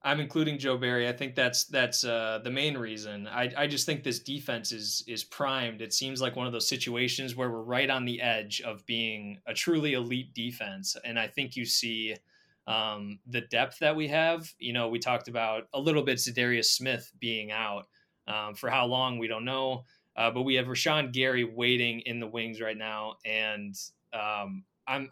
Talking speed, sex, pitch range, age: 205 wpm, male, 110-130 Hz, 20-39